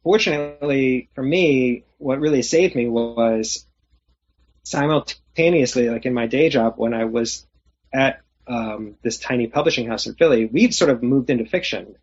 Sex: male